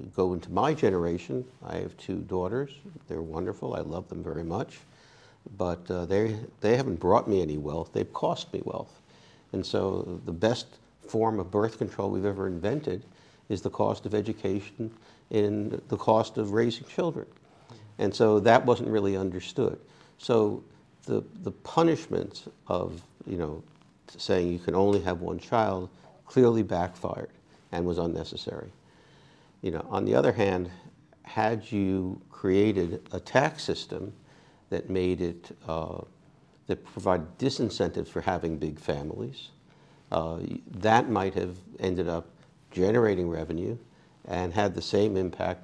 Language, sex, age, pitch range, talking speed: English, male, 60-79, 90-105 Hz, 145 wpm